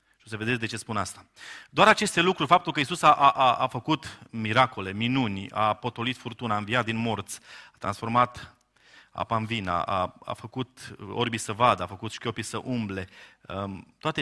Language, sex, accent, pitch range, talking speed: Romanian, male, native, 105-125 Hz, 180 wpm